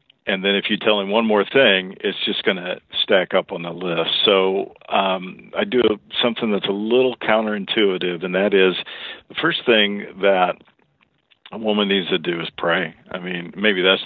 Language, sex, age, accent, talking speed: English, male, 50-69, American, 190 wpm